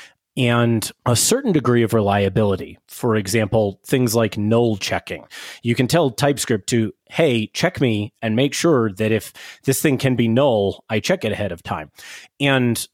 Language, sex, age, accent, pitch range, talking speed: English, male, 30-49, American, 110-140 Hz, 170 wpm